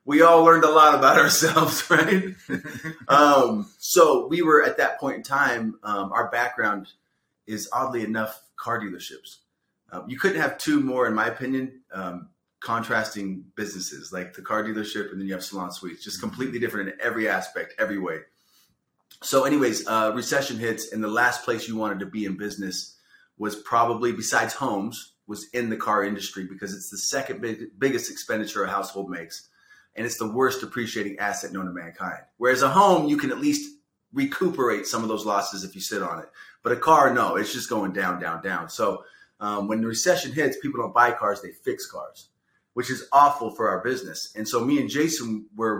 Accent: American